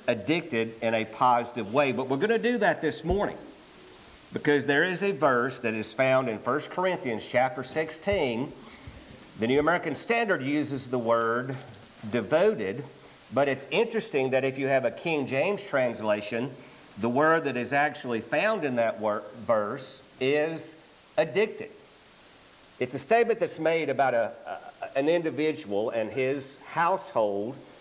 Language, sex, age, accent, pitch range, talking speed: English, male, 50-69, American, 130-180 Hz, 150 wpm